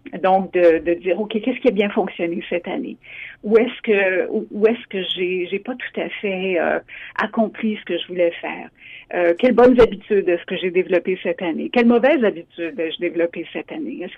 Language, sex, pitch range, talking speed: French, female, 170-215 Hz, 205 wpm